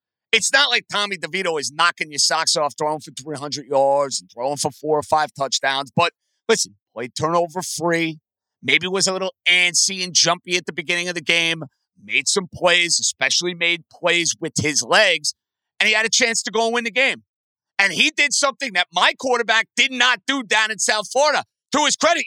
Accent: American